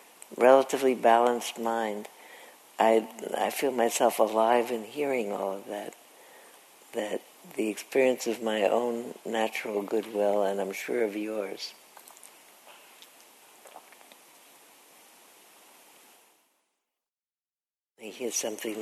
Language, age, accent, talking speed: English, 60-79, American, 90 wpm